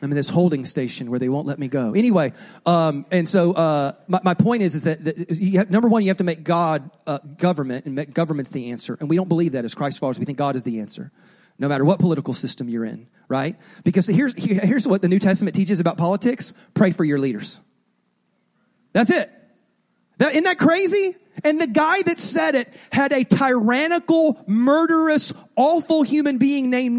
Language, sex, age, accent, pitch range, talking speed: English, male, 30-49, American, 165-250 Hz, 215 wpm